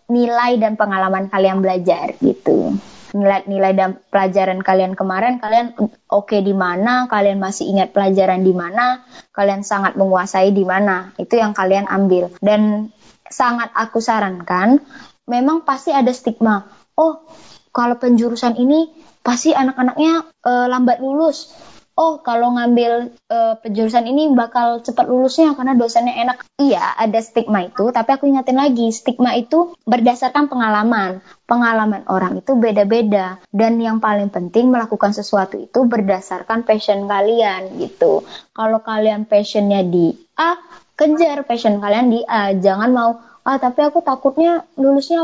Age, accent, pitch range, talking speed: 20-39, native, 200-255 Hz, 140 wpm